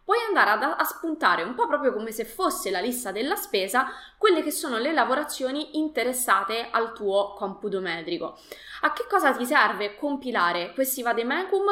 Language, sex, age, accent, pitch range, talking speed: Italian, female, 20-39, native, 205-300 Hz, 170 wpm